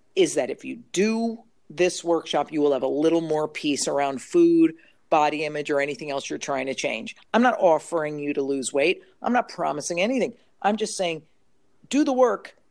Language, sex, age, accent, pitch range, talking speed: English, female, 50-69, American, 145-180 Hz, 200 wpm